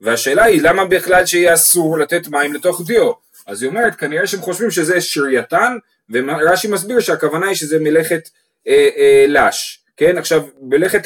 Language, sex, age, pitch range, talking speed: Hebrew, male, 30-49, 155-230 Hz, 165 wpm